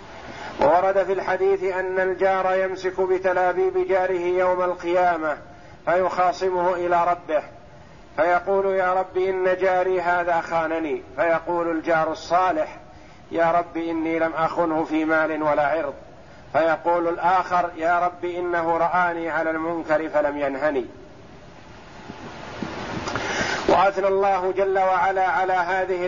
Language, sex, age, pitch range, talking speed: Arabic, male, 50-69, 165-190 Hz, 110 wpm